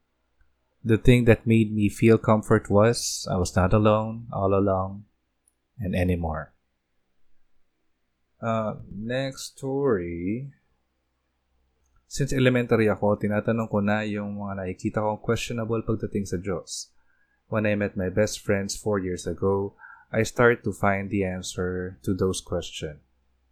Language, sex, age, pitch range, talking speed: Filipino, male, 20-39, 85-110 Hz, 130 wpm